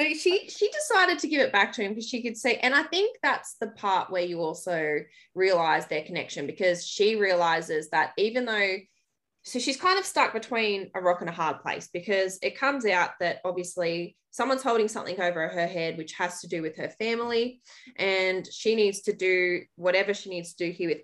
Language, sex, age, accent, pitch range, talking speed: English, female, 20-39, Australian, 170-220 Hz, 210 wpm